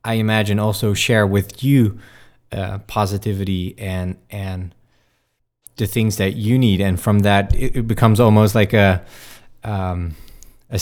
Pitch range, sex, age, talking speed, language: 95-115 Hz, male, 20-39, 145 wpm, English